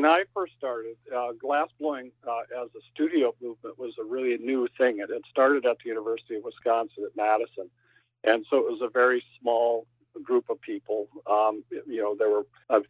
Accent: American